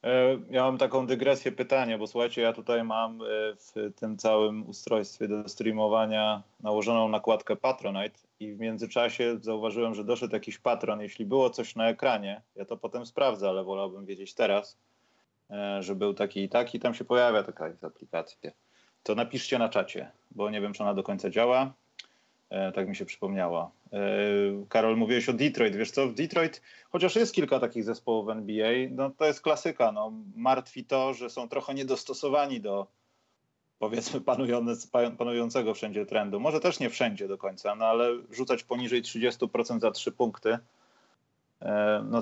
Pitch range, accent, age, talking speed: 110-130 Hz, native, 30-49, 160 wpm